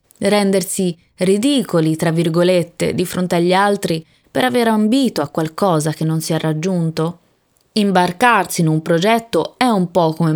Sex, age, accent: female, 20-39, native